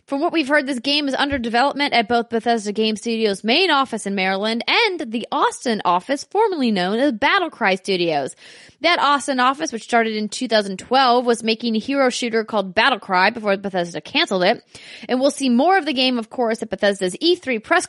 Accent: American